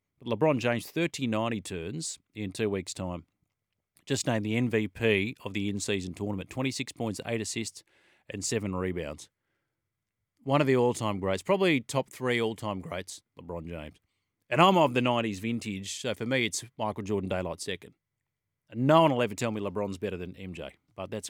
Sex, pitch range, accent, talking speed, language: male, 100-135 Hz, Australian, 175 wpm, English